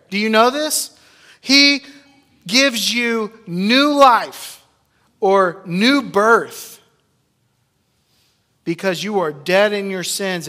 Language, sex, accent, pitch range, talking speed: English, male, American, 140-205 Hz, 110 wpm